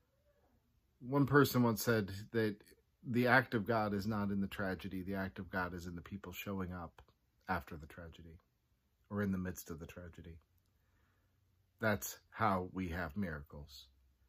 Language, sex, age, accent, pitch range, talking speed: English, male, 40-59, American, 90-115 Hz, 165 wpm